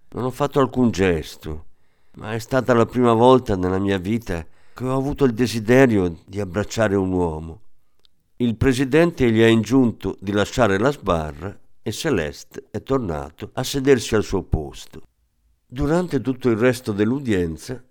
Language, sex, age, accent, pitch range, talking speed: Italian, male, 50-69, native, 90-125 Hz, 155 wpm